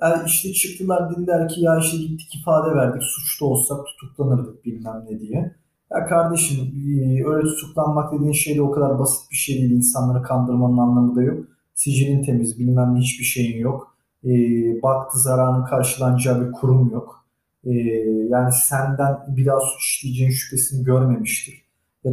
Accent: native